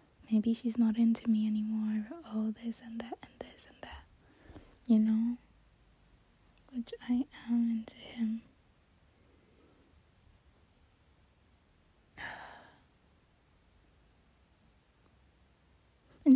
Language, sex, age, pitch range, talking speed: English, female, 10-29, 205-240 Hz, 80 wpm